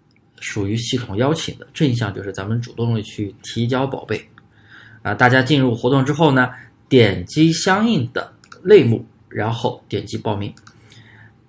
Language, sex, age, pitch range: Chinese, male, 20-39, 110-140 Hz